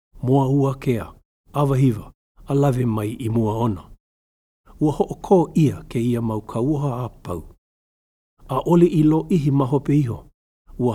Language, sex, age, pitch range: English, male, 60-79, 110-140 Hz